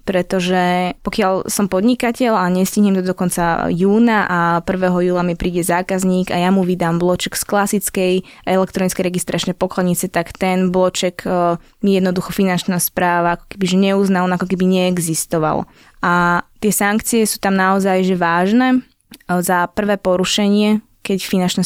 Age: 20-39